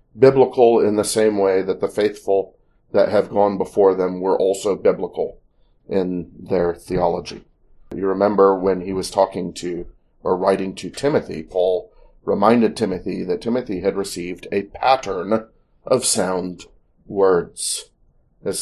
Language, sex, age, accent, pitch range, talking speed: English, male, 40-59, American, 95-115 Hz, 140 wpm